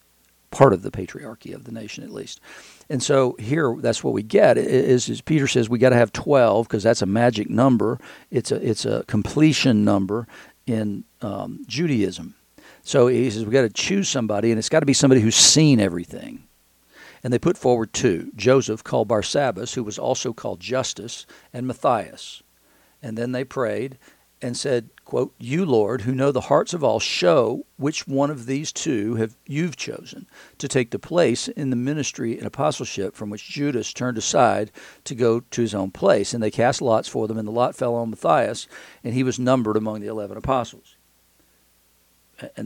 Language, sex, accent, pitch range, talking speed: English, male, American, 105-130 Hz, 190 wpm